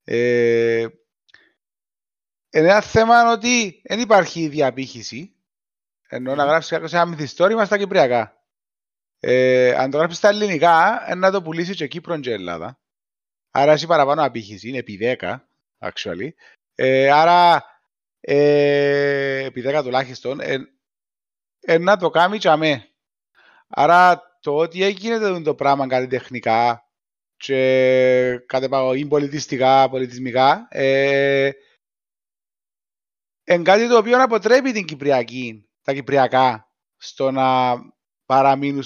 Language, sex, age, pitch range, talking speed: Greek, male, 30-49, 130-195 Hz, 115 wpm